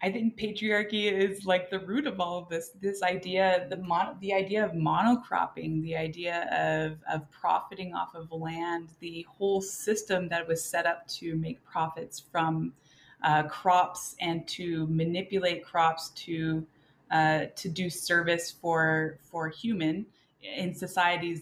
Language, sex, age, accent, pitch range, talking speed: English, female, 20-39, American, 155-180 Hz, 150 wpm